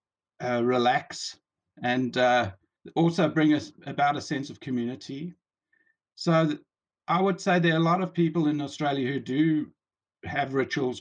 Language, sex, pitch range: English, male, 125-160 Hz